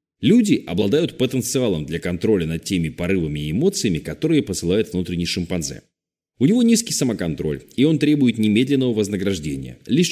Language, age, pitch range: Russian, 30-49, 90-130 Hz